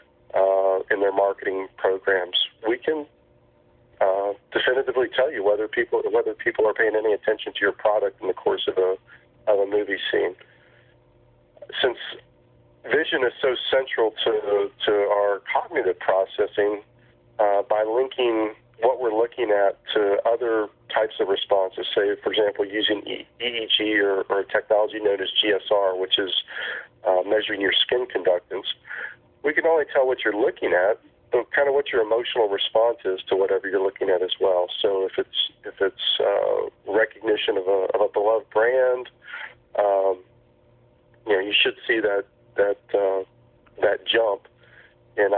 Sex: male